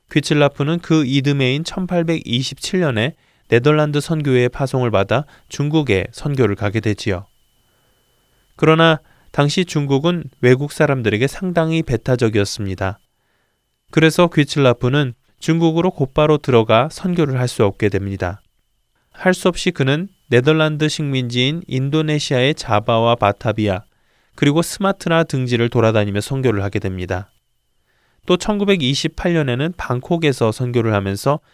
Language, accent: Korean, native